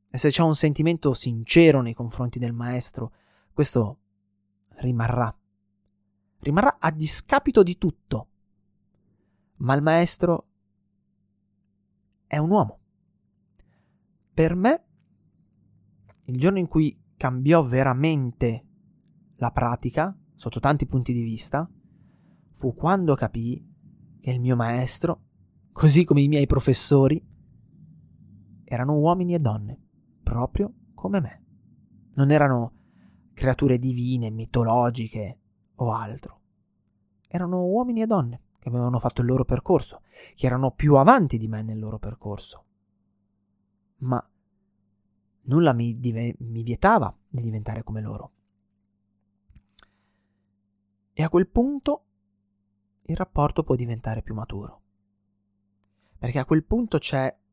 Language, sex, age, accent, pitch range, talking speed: Italian, male, 20-39, native, 100-150 Hz, 110 wpm